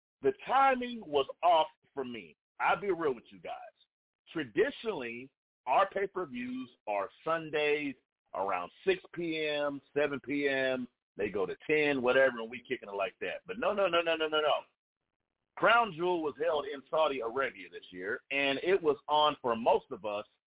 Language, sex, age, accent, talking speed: English, male, 50-69, American, 170 wpm